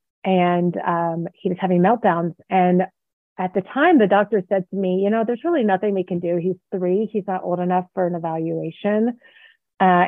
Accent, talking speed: American, 195 wpm